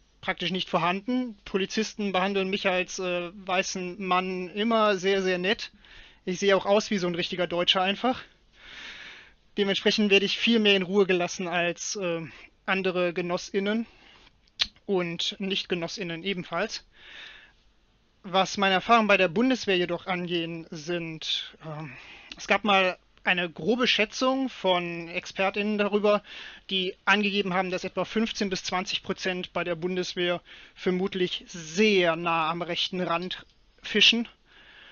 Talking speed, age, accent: 130 wpm, 30-49, German